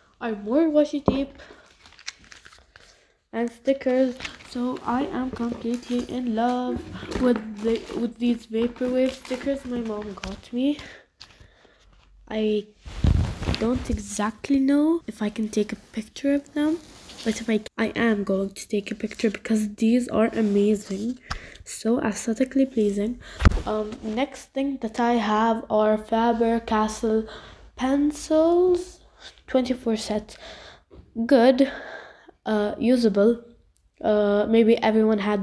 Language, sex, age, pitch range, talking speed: English, female, 10-29, 215-255 Hz, 115 wpm